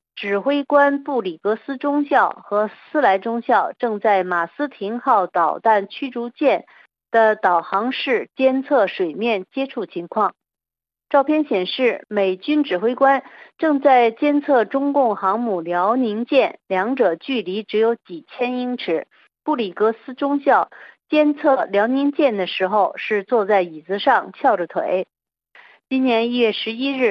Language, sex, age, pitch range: Chinese, female, 50-69, 200-270 Hz